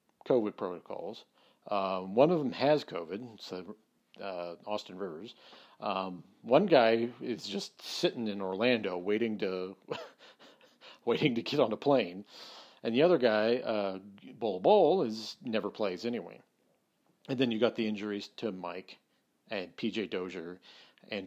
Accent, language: American, English